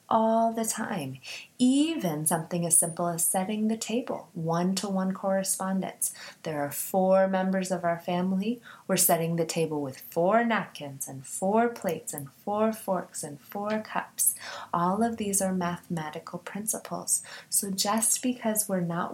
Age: 30-49